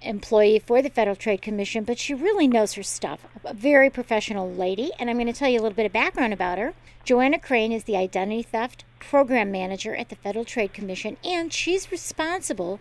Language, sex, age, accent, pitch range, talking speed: English, female, 50-69, American, 220-265 Hz, 210 wpm